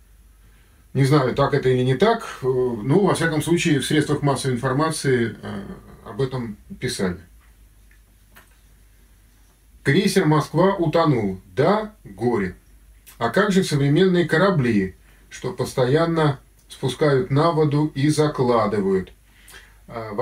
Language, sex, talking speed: Russian, male, 110 wpm